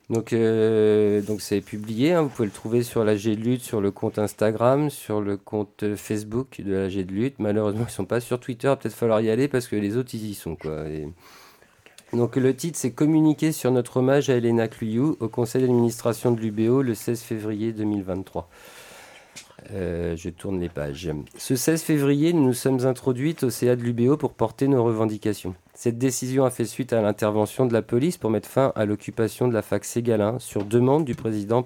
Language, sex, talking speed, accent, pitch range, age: French, male, 215 wpm, French, 110-145 Hz, 40-59